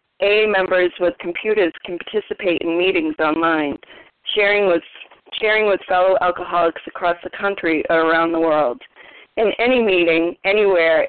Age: 40-59